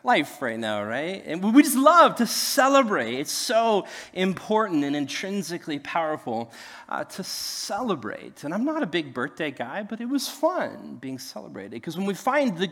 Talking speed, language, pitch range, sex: 175 wpm, English, 150-220 Hz, male